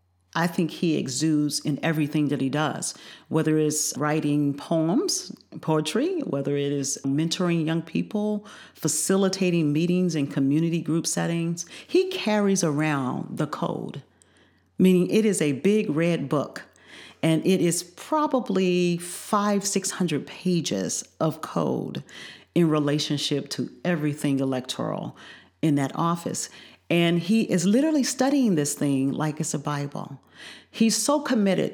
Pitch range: 150-185 Hz